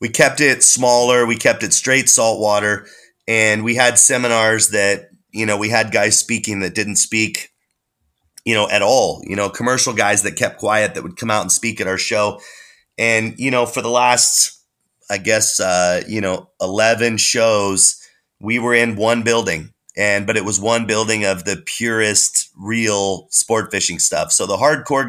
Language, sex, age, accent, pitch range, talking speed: English, male, 30-49, American, 100-115 Hz, 185 wpm